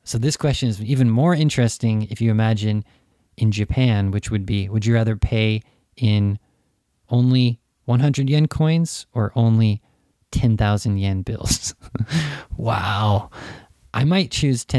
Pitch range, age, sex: 105-130 Hz, 20-39, male